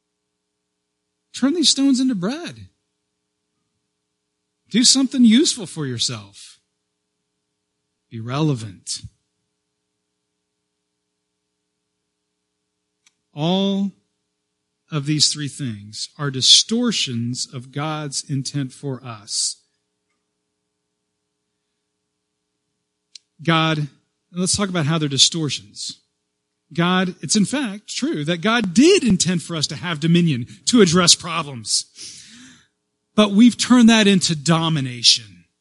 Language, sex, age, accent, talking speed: English, male, 40-59, American, 90 wpm